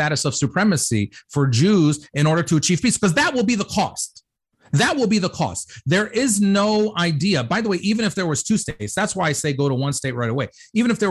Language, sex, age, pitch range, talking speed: English, male, 40-59, 135-180 Hz, 255 wpm